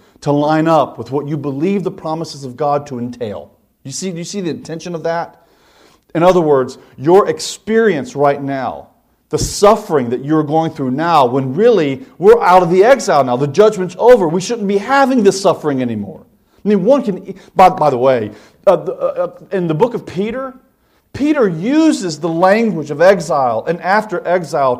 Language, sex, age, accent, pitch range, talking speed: English, male, 40-59, American, 160-225 Hz, 195 wpm